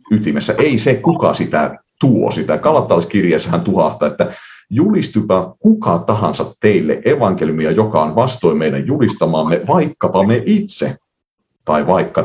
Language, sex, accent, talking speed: Finnish, male, native, 120 wpm